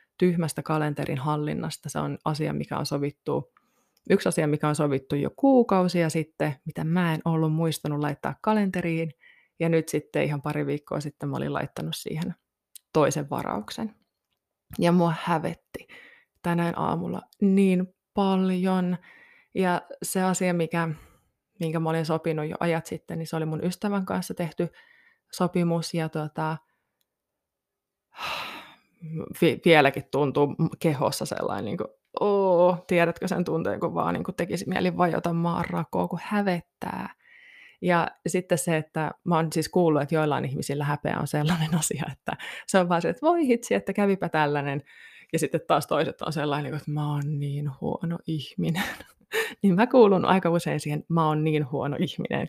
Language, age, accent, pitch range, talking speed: Finnish, 20-39, native, 155-185 Hz, 150 wpm